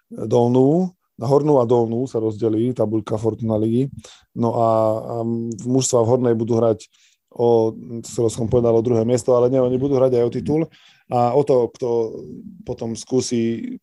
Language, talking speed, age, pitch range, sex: Slovak, 165 wpm, 20-39, 115-130 Hz, male